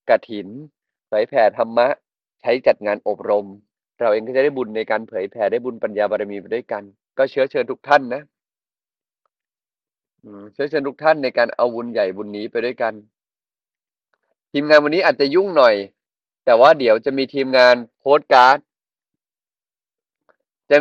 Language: Thai